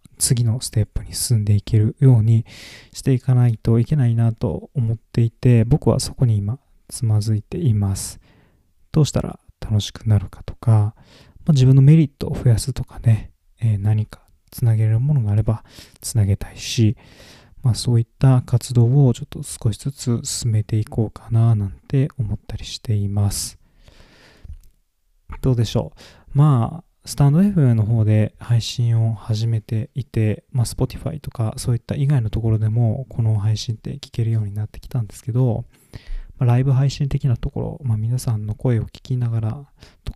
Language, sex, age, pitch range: Japanese, male, 20-39, 105-130 Hz